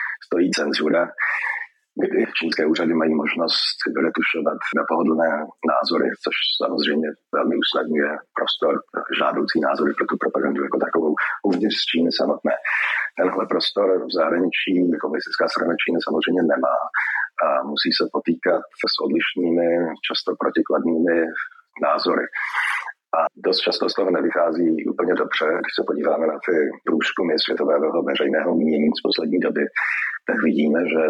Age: 40-59